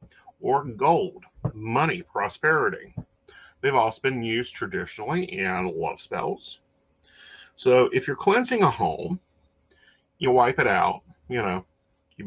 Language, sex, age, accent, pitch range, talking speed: English, male, 40-59, American, 80-120 Hz, 120 wpm